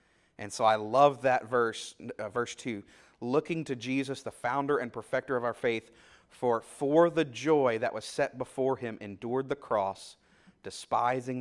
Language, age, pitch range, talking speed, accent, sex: English, 30-49, 120-160 Hz, 170 wpm, American, male